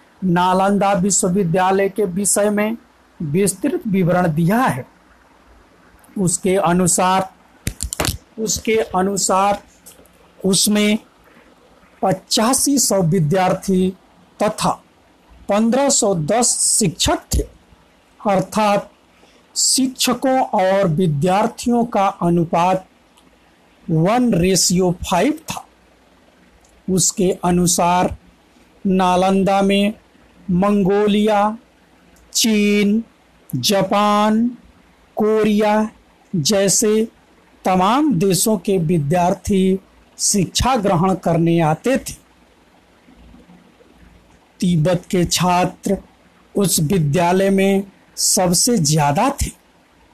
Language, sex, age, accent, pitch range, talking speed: Hindi, male, 60-79, native, 180-215 Hz, 70 wpm